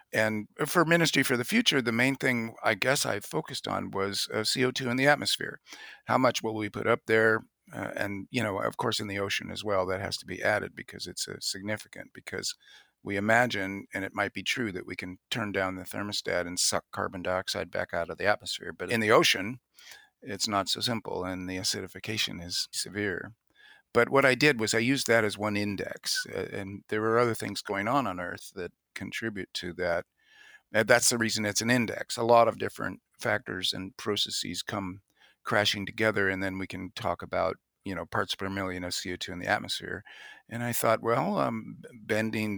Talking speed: 205 wpm